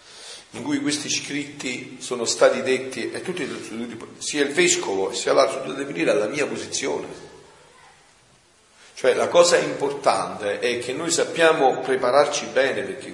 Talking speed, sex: 135 wpm, male